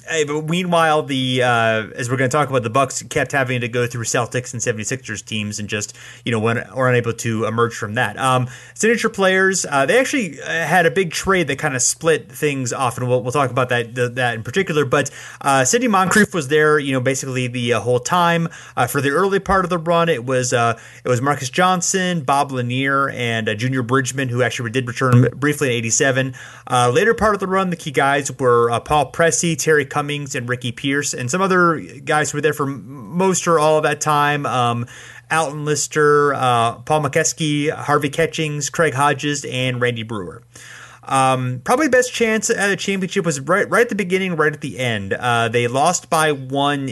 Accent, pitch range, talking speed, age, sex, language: American, 125-155 Hz, 210 wpm, 30-49, male, English